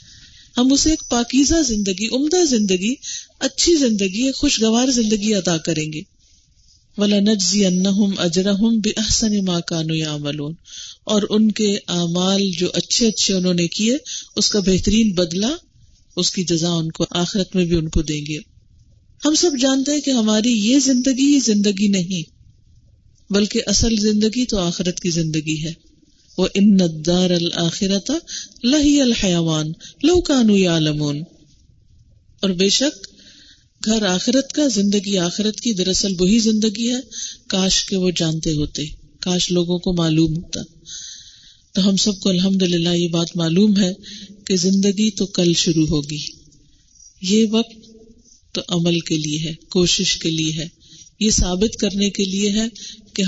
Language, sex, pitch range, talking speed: Urdu, female, 170-220 Hz, 135 wpm